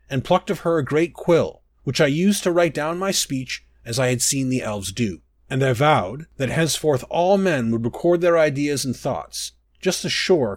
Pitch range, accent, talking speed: 125-170 Hz, American, 215 wpm